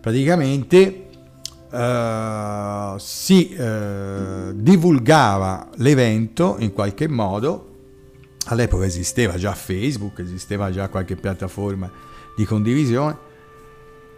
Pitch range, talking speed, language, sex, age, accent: 100-140 Hz, 80 wpm, Italian, male, 50-69, native